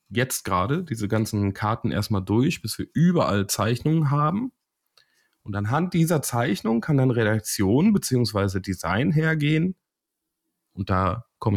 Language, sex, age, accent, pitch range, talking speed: German, male, 30-49, German, 100-135 Hz, 130 wpm